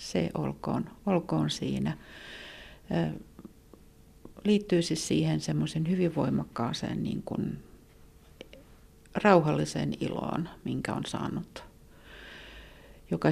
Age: 60-79